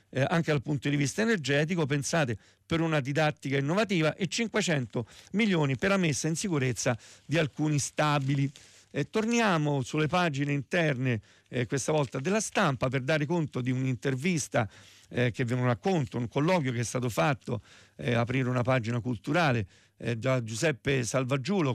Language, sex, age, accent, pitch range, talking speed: Italian, male, 50-69, native, 120-155 Hz, 155 wpm